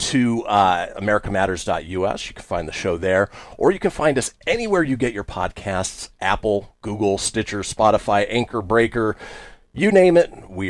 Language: English